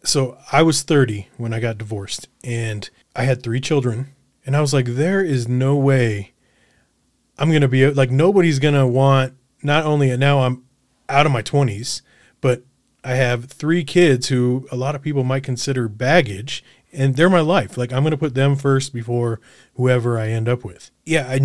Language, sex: English, male